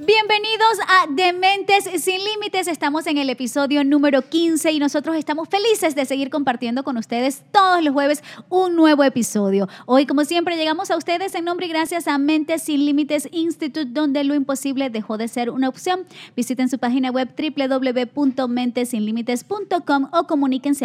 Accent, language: American, Spanish